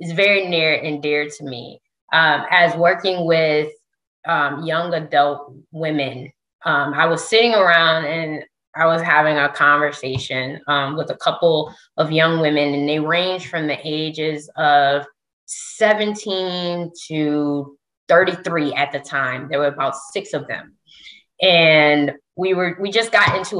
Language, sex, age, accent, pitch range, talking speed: English, female, 20-39, American, 150-180 Hz, 150 wpm